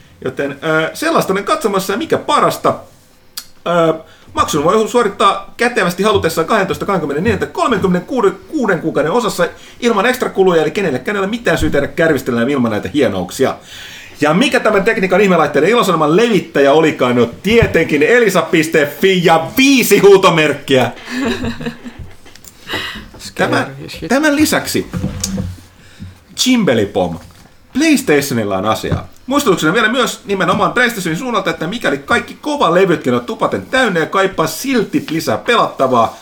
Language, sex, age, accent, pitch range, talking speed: Finnish, male, 30-49, native, 155-235 Hz, 110 wpm